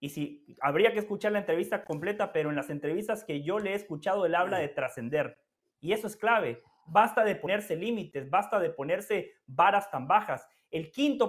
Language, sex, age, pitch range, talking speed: Spanish, male, 30-49, 180-250 Hz, 200 wpm